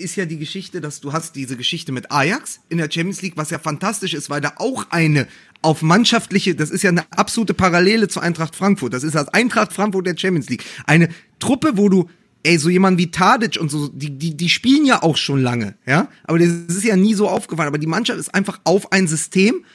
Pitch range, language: 150-190 Hz, German